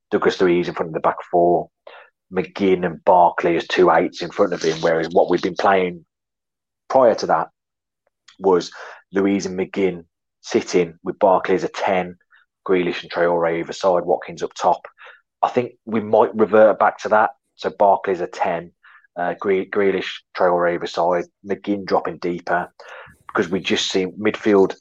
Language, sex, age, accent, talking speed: English, male, 30-49, British, 165 wpm